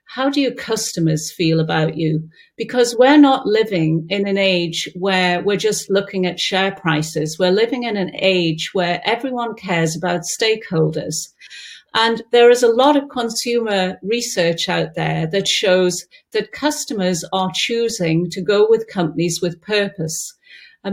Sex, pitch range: female, 175-220 Hz